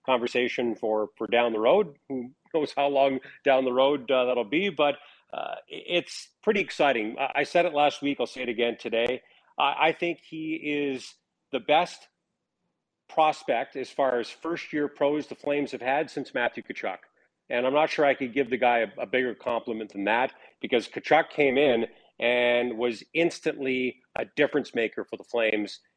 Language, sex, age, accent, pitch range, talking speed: English, male, 40-59, American, 120-145 Hz, 180 wpm